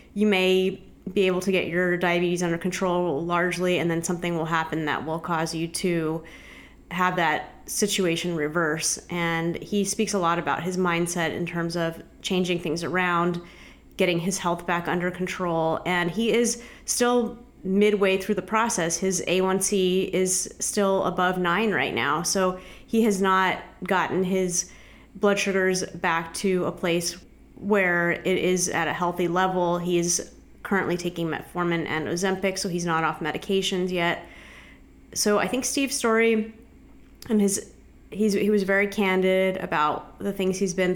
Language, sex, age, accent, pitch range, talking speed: English, female, 30-49, American, 170-195 Hz, 160 wpm